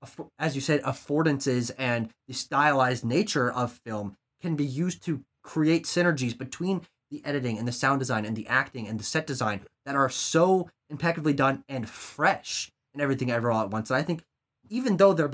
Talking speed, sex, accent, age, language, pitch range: 190 wpm, male, American, 20-39, English, 125-160 Hz